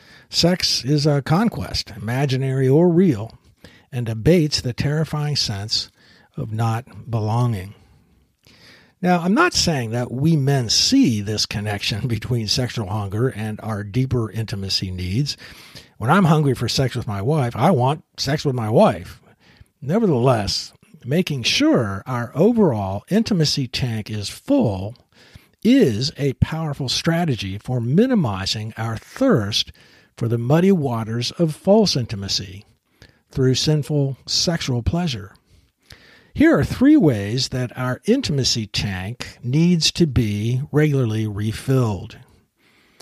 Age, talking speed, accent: 60-79, 125 wpm, American